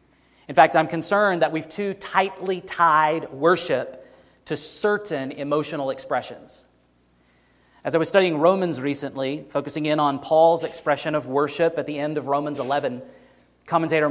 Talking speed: 145 wpm